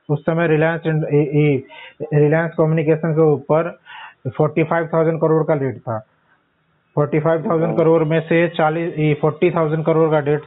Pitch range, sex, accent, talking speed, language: 150-165 Hz, male, native, 125 wpm, Hindi